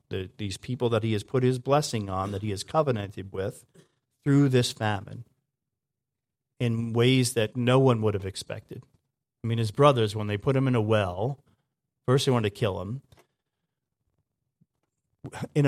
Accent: American